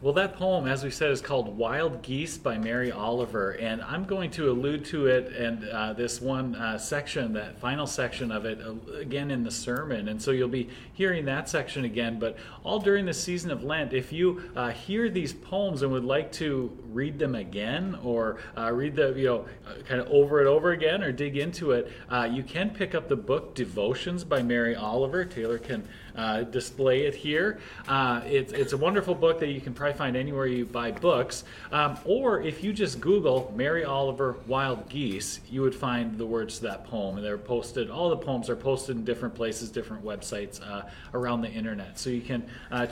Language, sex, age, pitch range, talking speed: English, male, 30-49, 120-160 Hz, 210 wpm